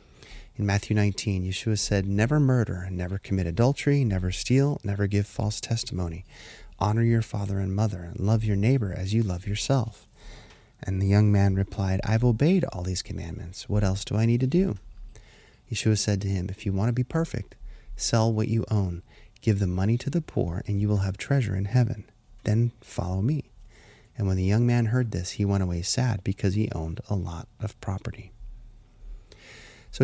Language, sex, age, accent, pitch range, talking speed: English, male, 30-49, American, 95-115 Hz, 190 wpm